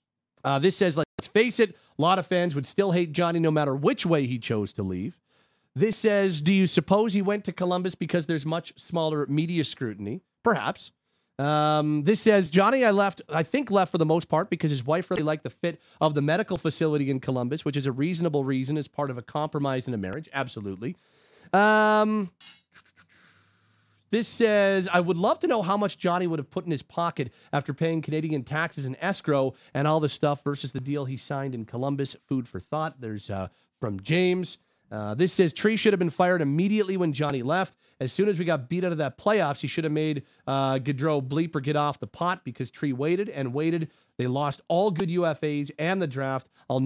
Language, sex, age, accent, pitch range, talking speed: English, male, 30-49, American, 135-180 Hz, 215 wpm